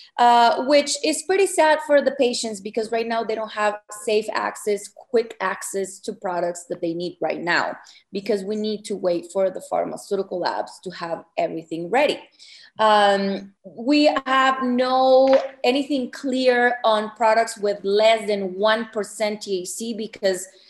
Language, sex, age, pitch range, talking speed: English, female, 30-49, 190-235 Hz, 150 wpm